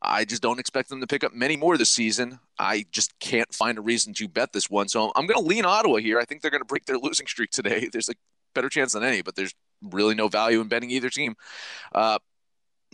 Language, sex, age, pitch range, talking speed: English, male, 30-49, 110-145 Hz, 255 wpm